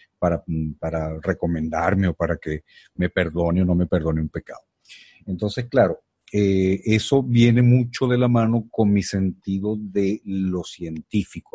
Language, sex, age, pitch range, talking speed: Spanish, male, 40-59, 85-105 Hz, 150 wpm